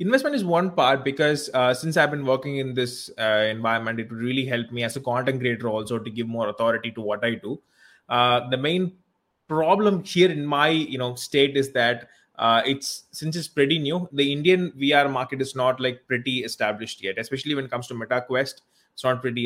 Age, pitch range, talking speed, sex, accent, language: 20-39, 120-150 Hz, 210 wpm, male, Indian, English